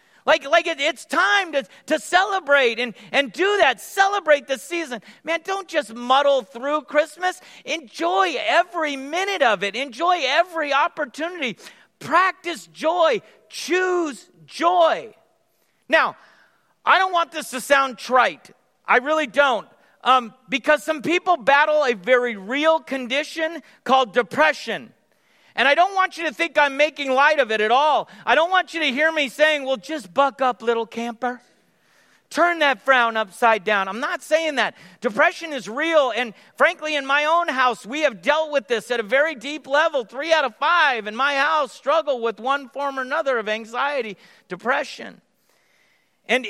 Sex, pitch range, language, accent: male, 240-310 Hz, English, American